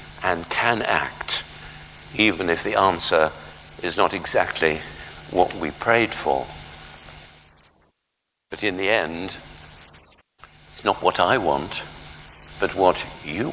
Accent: British